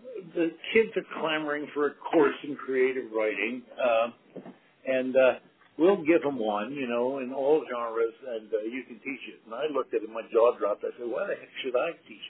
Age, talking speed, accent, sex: 60-79, 220 wpm, American, male